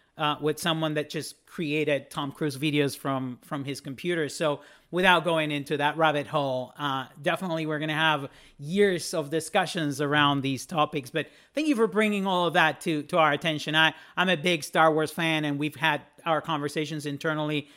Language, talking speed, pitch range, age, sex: English, 195 wpm, 145-180 Hz, 40-59, male